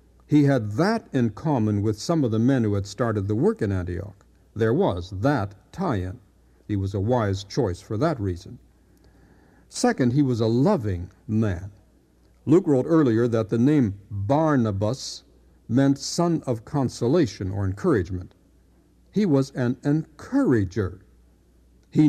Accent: American